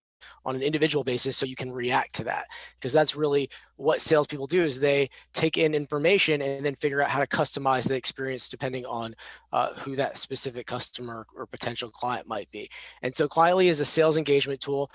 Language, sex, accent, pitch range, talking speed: English, male, American, 130-150 Hz, 200 wpm